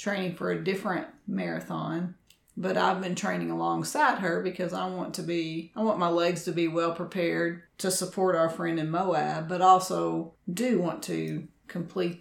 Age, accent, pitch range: 40-59, American, 170-200 Hz